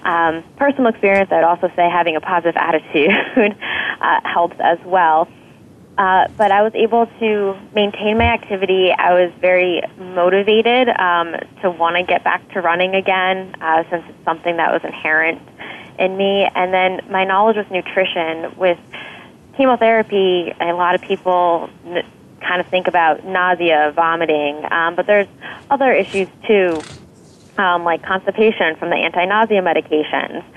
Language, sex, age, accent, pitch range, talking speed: English, female, 10-29, American, 170-200 Hz, 150 wpm